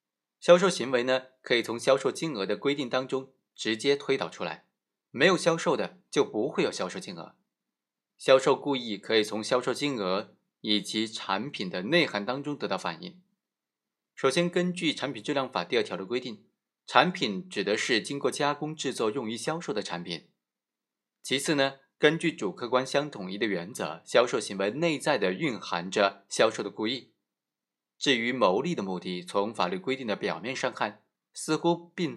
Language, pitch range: Chinese, 110-155 Hz